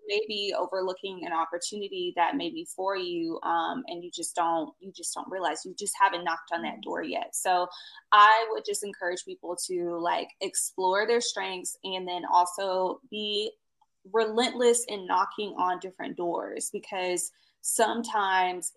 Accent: American